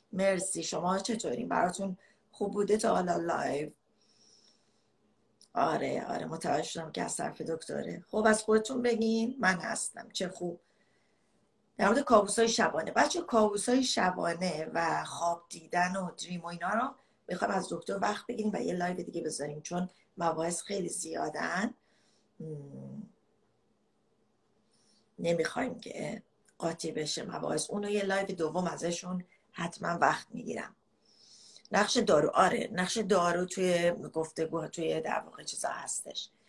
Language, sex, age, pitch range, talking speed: Persian, female, 40-59, 170-220 Hz, 130 wpm